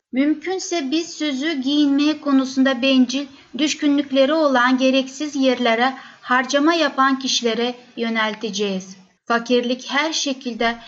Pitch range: 245-290 Hz